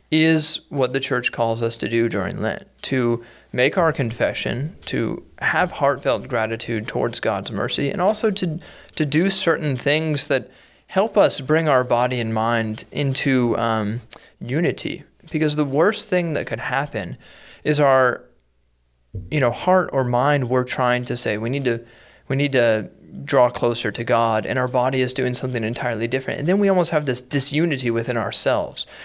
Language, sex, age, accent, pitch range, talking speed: English, male, 30-49, American, 115-150 Hz, 170 wpm